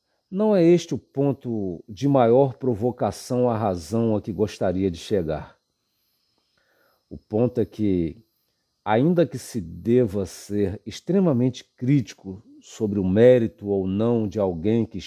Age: 50-69